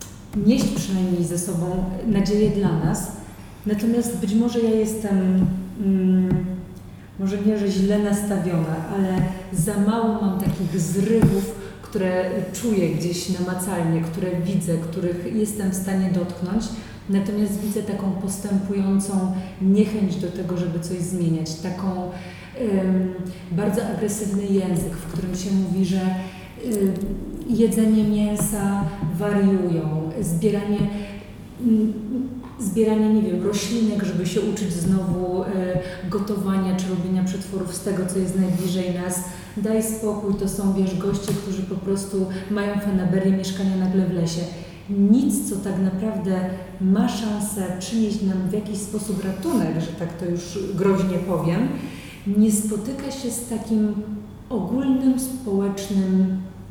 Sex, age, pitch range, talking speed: female, 30-49, 185-210 Hz, 125 wpm